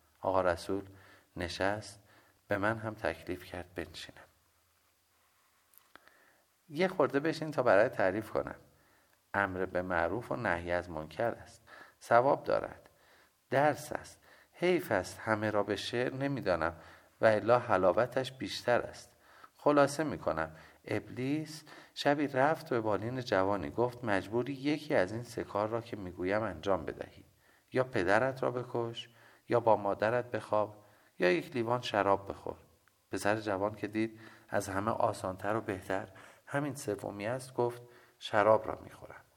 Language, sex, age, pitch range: Persian, male, 50-69, 95-120 Hz